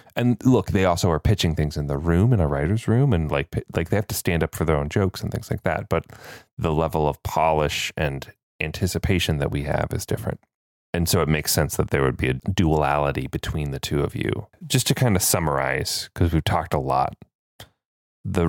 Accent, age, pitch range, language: American, 30-49, 75-100 Hz, English